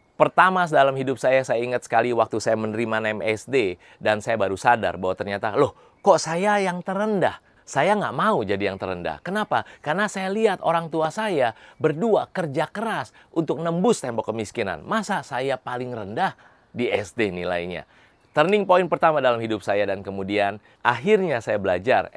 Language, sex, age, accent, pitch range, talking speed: Indonesian, male, 30-49, native, 110-155 Hz, 160 wpm